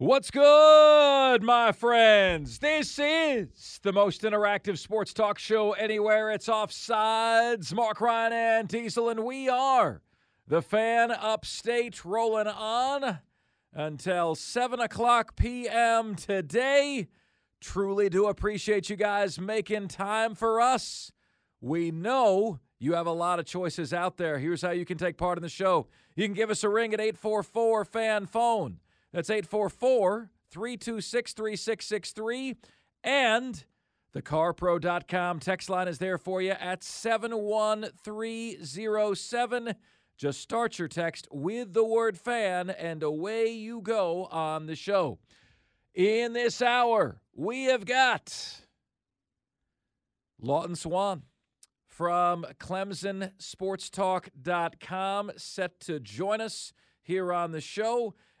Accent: American